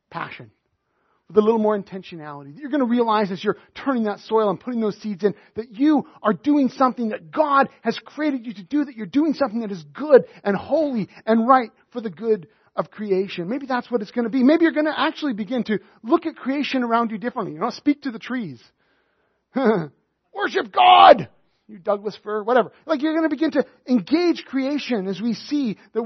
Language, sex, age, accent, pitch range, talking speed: English, male, 40-59, American, 200-255 Hz, 210 wpm